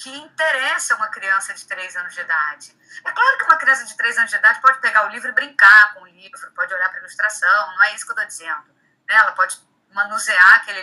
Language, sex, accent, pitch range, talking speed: Portuguese, female, Brazilian, 195-300 Hz, 250 wpm